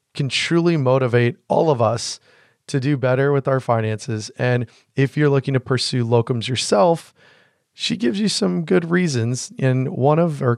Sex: male